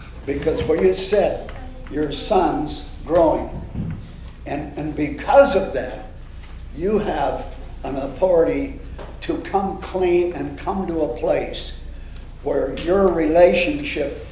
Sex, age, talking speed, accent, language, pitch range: male, 60-79, 115 wpm, American, English, 120-190 Hz